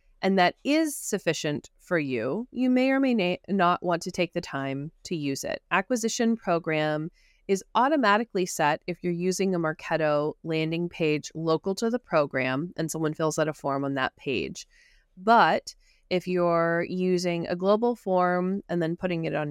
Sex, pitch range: female, 155-195 Hz